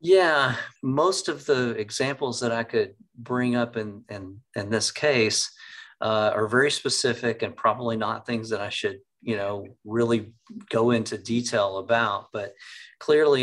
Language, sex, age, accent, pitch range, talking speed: English, male, 40-59, American, 100-120 Hz, 155 wpm